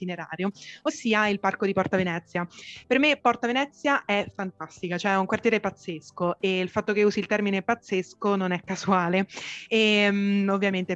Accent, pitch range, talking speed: native, 180-220 Hz, 170 wpm